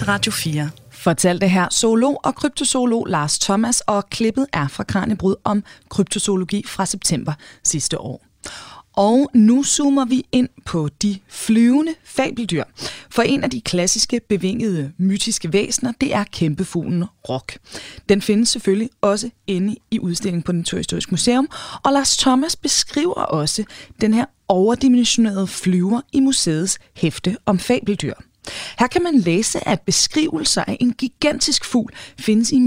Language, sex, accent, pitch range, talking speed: Danish, female, native, 180-255 Hz, 145 wpm